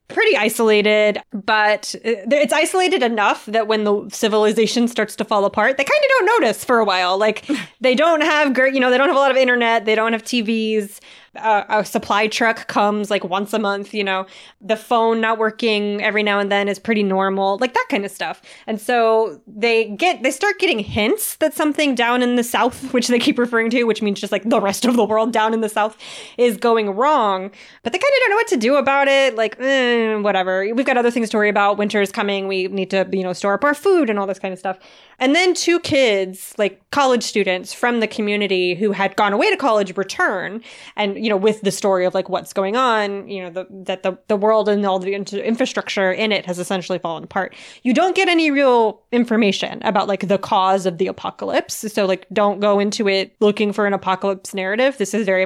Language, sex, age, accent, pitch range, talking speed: English, female, 20-39, American, 200-245 Hz, 230 wpm